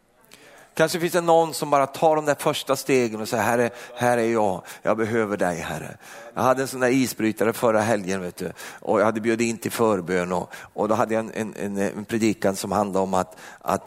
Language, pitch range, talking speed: Swedish, 100-120 Hz, 220 wpm